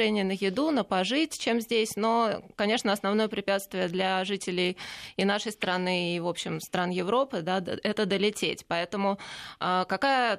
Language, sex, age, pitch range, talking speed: Russian, female, 20-39, 190-225 Hz, 145 wpm